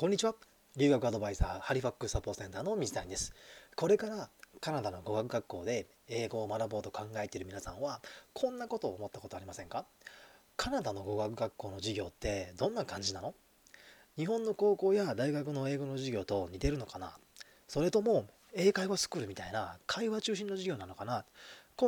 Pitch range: 105-170 Hz